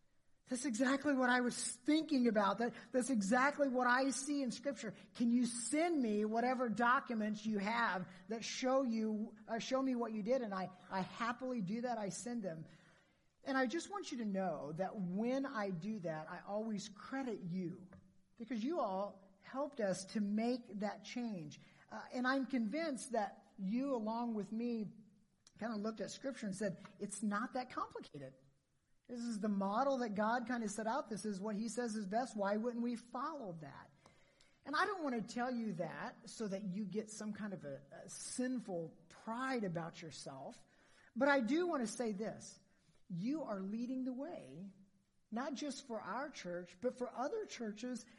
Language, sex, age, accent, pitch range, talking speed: English, male, 40-59, American, 200-255 Hz, 185 wpm